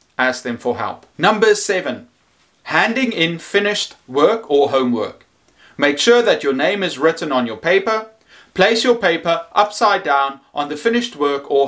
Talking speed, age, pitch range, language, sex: 165 wpm, 30-49, 140-230 Hz, English, male